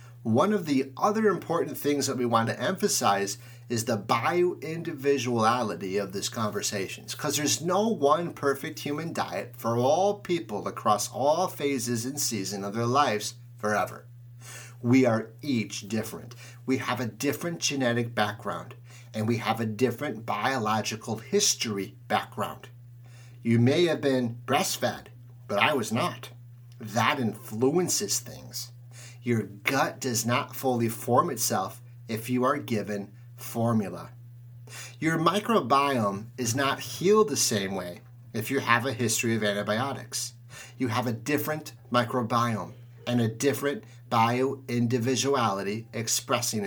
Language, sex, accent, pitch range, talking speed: English, male, American, 115-140 Hz, 130 wpm